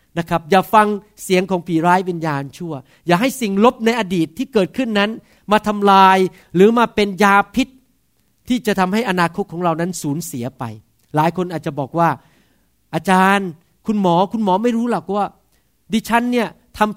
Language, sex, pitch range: Thai, male, 165-225 Hz